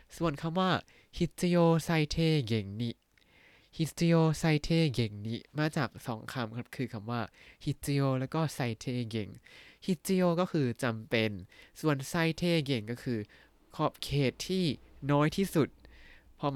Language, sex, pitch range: Thai, male, 120-160 Hz